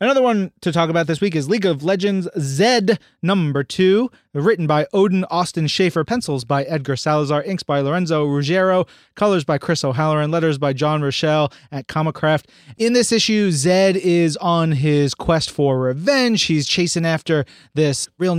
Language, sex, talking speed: English, male, 170 wpm